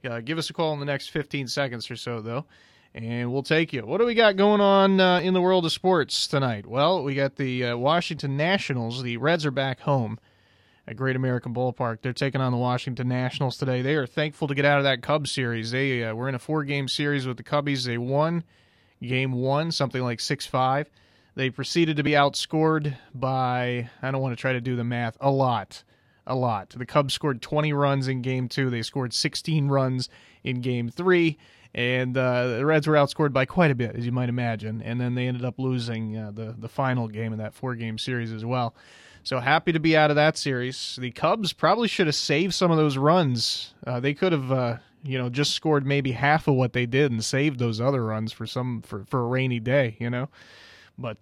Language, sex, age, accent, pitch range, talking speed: English, male, 30-49, American, 120-150 Hz, 225 wpm